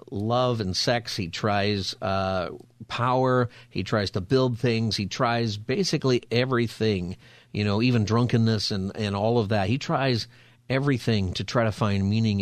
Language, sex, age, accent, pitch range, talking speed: English, male, 50-69, American, 105-125 Hz, 160 wpm